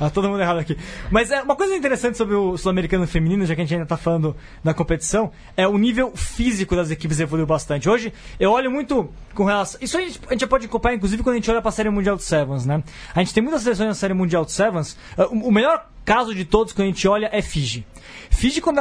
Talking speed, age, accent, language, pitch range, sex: 260 wpm, 20-39, Brazilian, Portuguese, 180-240 Hz, male